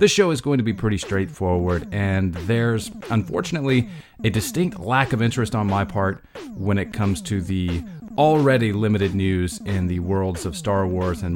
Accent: American